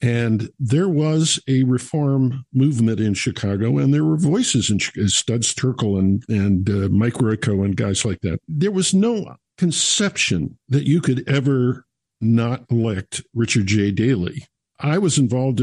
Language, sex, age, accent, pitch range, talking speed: English, male, 50-69, American, 115-155 Hz, 155 wpm